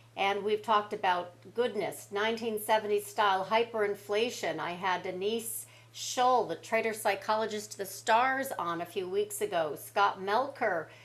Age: 40-59